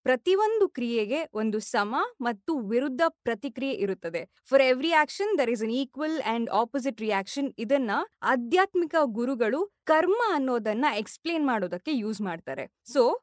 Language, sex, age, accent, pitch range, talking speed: Kannada, female, 20-39, native, 235-325 Hz, 125 wpm